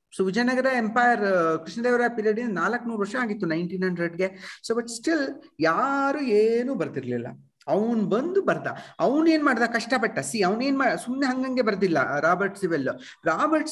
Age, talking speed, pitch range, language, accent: 50-69, 140 wpm, 170-270 Hz, Kannada, native